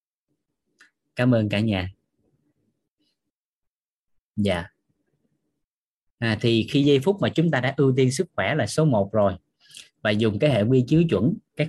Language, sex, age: Vietnamese, male, 20-39